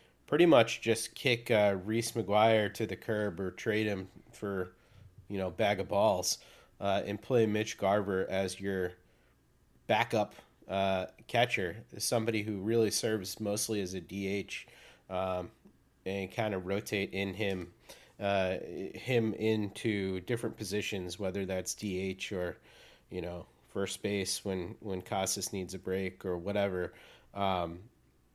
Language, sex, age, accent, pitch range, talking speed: English, male, 30-49, American, 95-115 Hz, 140 wpm